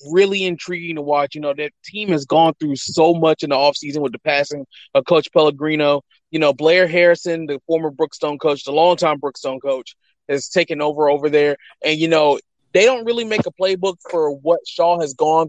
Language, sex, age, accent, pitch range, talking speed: English, male, 20-39, American, 155-190 Hz, 205 wpm